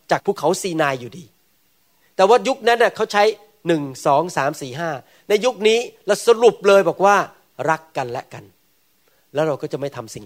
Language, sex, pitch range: Thai, male, 160-220 Hz